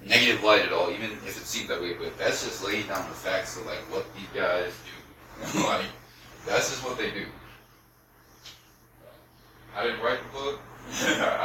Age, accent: 30-49, American